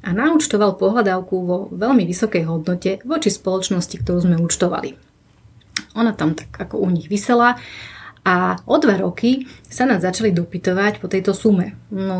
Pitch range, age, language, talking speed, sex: 180-215 Hz, 30-49, Slovak, 155 wpm, female